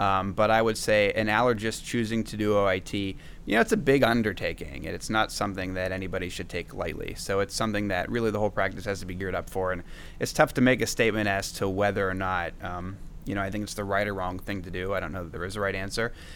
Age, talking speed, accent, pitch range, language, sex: 30-49, 270 wpm, American, 95-110 Hz, English, male